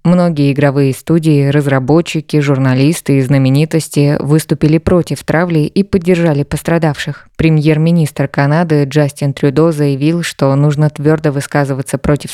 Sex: female